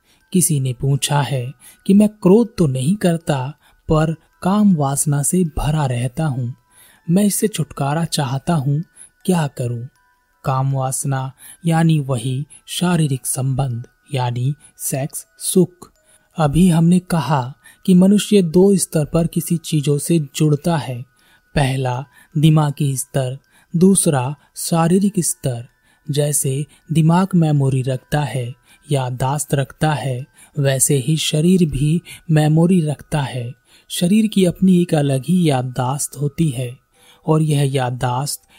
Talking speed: 125 wpm